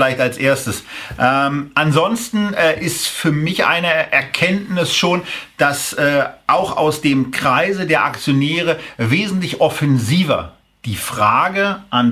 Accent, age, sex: German, 40-59, male